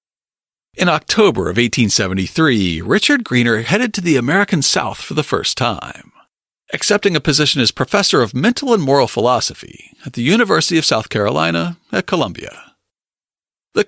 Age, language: 50-69, English